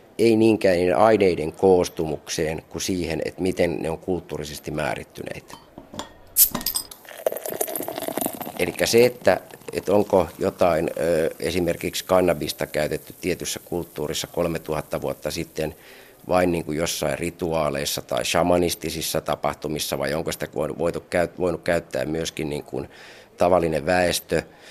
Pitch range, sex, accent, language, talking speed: 75-95 Hz, male, native, Finnish, 100 wpm